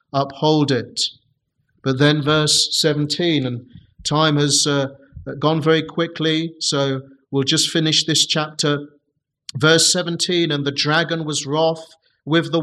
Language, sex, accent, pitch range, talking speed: English, male, British, 140-165 Hz, 135 wpm